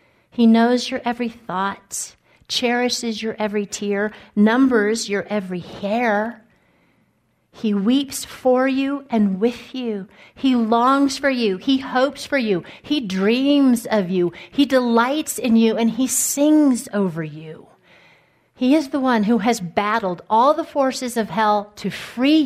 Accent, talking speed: American, 145 wpm